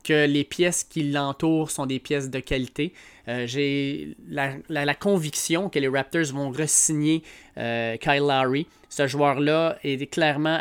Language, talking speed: French, 155 wpm